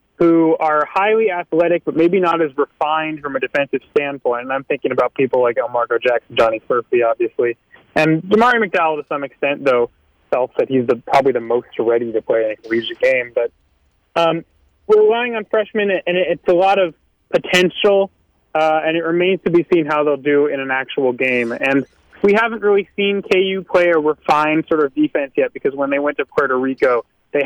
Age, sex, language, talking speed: 30-49, male, English, 200 wpm